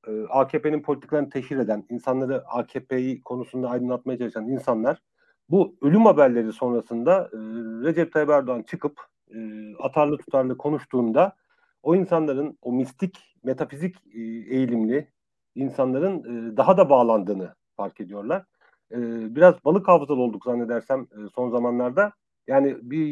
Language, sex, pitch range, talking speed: Turkish, male, 120-150 Hz, 125 wpm